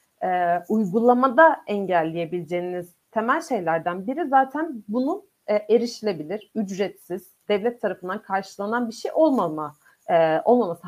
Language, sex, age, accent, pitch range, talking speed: Turkish, female, 40-59, native, 175-250 Hz, 90 wpm